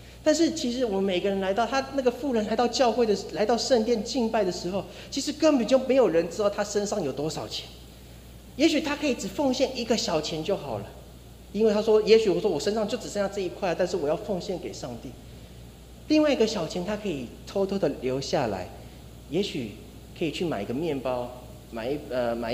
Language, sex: Chinese, male